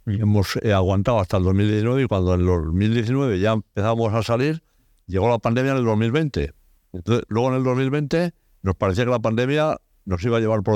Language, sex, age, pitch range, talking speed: Spanish, male, 60-79, 95-120 Hz, 200 wpm